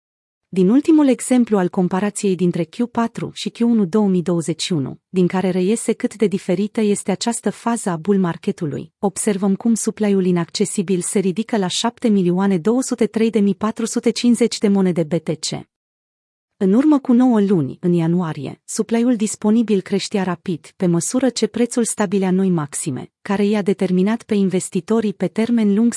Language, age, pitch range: Romanian, 30-49, 180-230 Hz